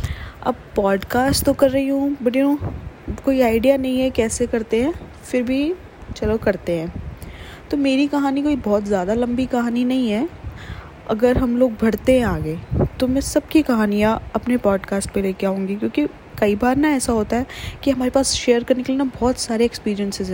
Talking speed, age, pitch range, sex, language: 190 wpm, 20-39, 195-260 Hz, female, Hindi